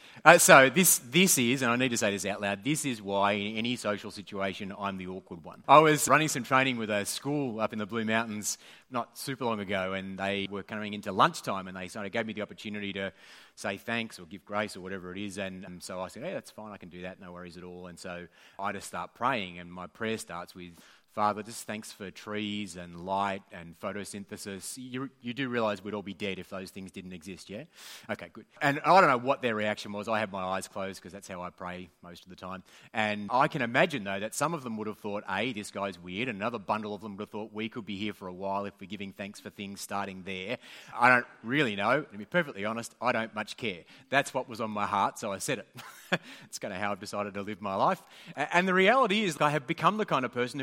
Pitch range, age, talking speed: 95-115 Hz, 30-49, 260 wpm